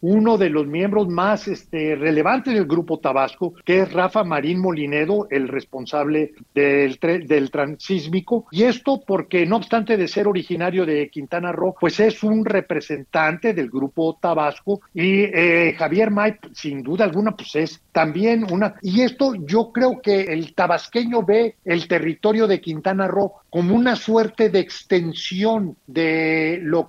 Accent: Mexican